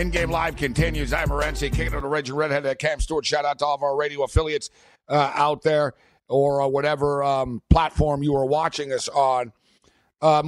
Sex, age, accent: male, 50-69, American